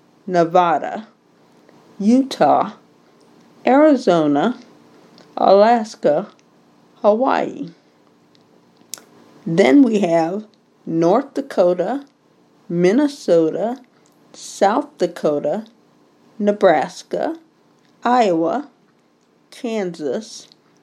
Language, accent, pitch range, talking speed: English, American, 170-260 Hz, 45 wpm